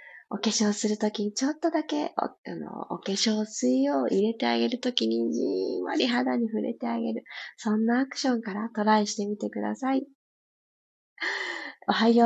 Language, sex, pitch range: Japanese, female, 195-255 Hz